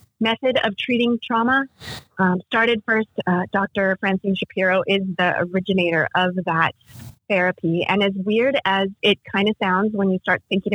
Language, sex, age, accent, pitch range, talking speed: English, female, 30-49, American, 175-200 Hz, 160 wpm